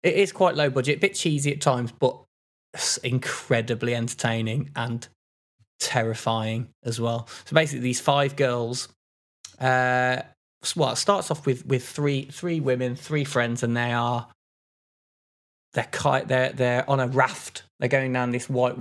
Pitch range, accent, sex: 115-135 Hz, British, male